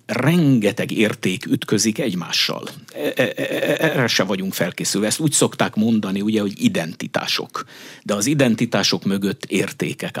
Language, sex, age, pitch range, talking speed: Hungarian, male, 60-79, 105-160 Hz, 110 wpm